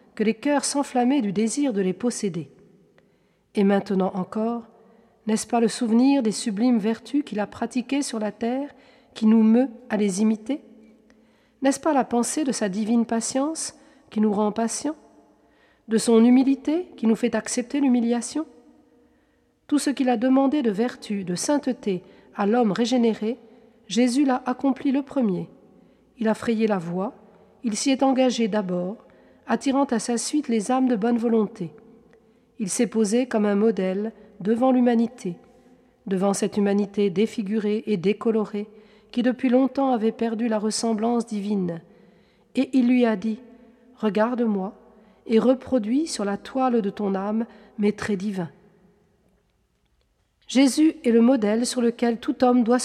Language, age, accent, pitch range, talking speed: French, 40-59, French, 210-250 Hz, 155 wpm